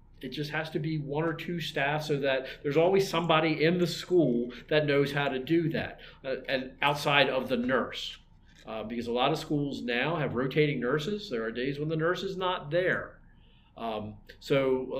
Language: English